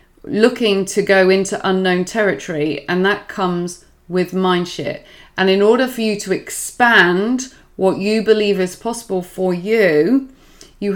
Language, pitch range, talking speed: English, 180-220 Hz, 150 wpm